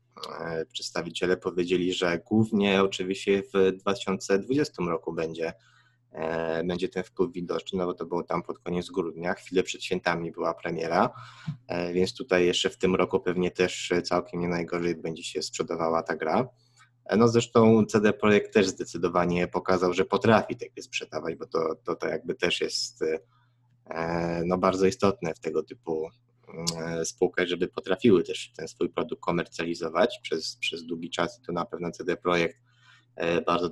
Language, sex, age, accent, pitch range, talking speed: Polish, male, 20-39, native, 85-110 Hz, 150 wpm